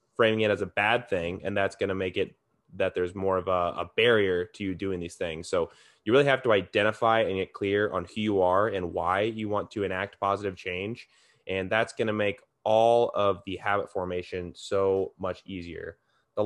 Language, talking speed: English, 215 wpm